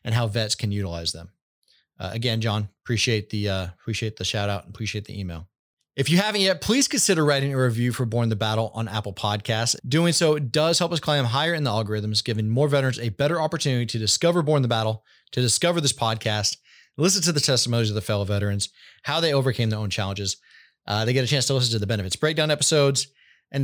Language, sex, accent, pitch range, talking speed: English, male, American, 110-145 Hz, 225 wpm